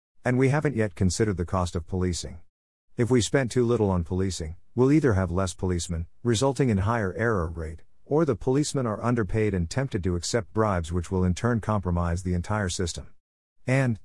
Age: 50-69